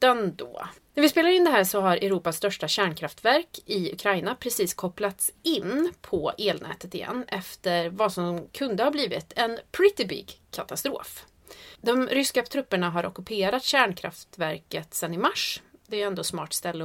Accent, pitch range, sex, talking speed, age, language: native, 180-290 Hz, female, 160 wpm, 30-49, Swedish